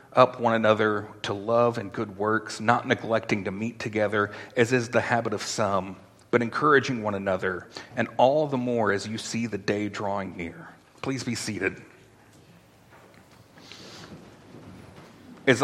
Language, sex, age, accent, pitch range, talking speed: English, male, 40-59, American, 105-130 Hz, 145 wpm